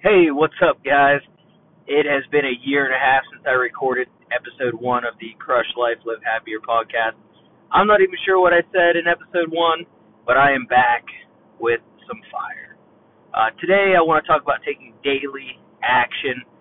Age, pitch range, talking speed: 30-49, 130-170 Hz, 185 wpm